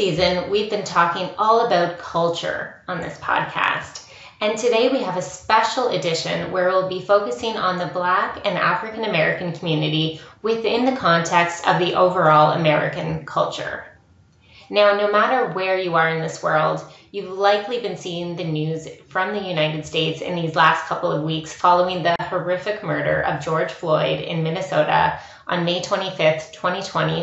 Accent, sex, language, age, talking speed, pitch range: American, female, English, 20-39, 160 wpm, 165-200 Hz